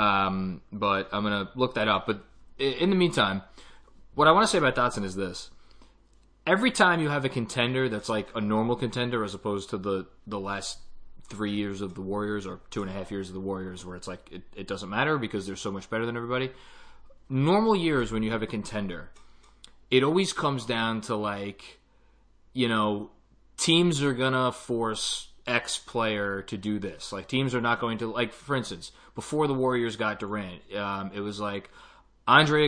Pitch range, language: 100-125 Hz, English